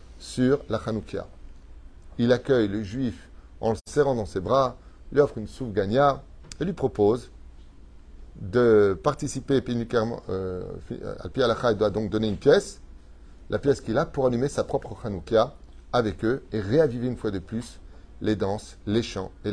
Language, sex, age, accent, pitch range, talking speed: French, male, 30-49, French, 75-115 Hz, 165 wpm